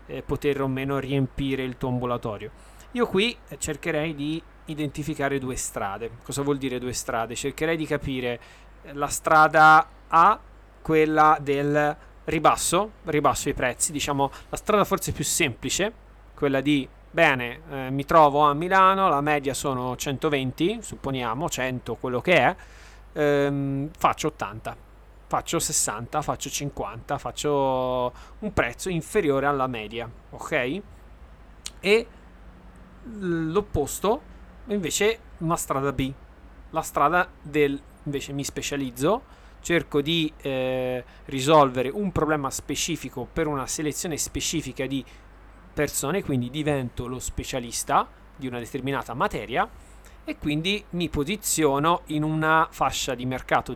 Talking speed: 125 wpm